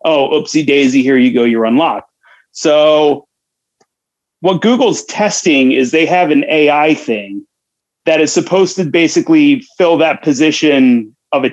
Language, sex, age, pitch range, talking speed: English, male, 30-49, 140-225 Hz, 140 wpm